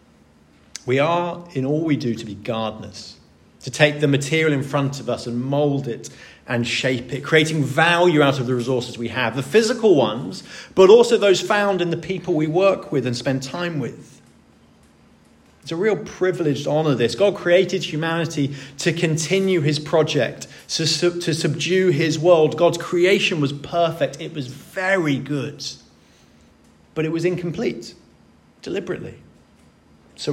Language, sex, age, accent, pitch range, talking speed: English, male, 30-49, British, 125-170 Hz, 160 wpm